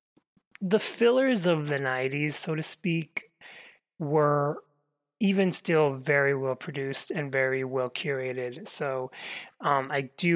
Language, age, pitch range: English, 30-49, 135-165 Hz